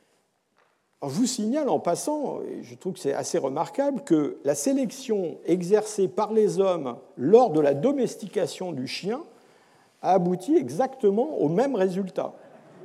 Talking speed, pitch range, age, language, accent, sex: 145 wpm, 185-260 Hz, 50-69, French, French, male